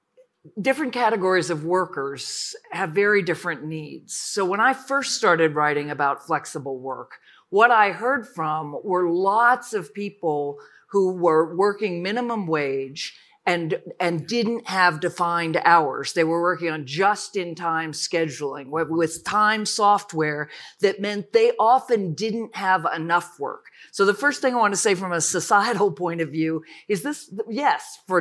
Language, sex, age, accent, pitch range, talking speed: English, female, 40-59, American, 165-225 Hz, 150 wpm